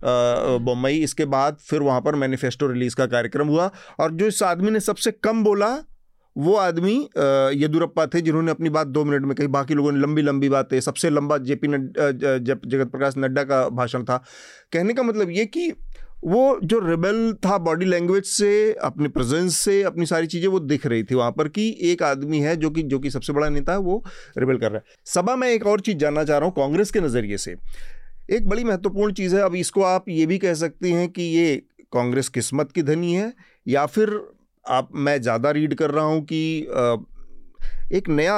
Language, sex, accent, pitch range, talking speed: Hindi, male, native, 135-180 Hz, 205 wpm